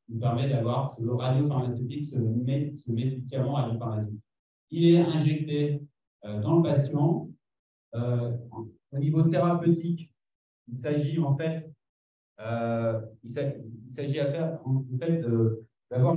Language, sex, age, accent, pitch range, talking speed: French, male, 40-59, French, 120-150 Hz, 130 wpm